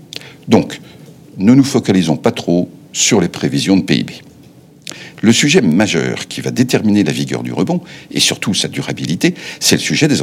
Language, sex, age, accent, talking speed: French, male, 60-79, French, 170 wpm